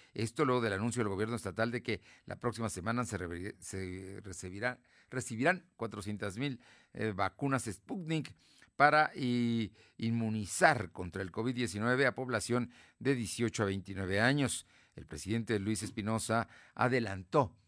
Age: 50-69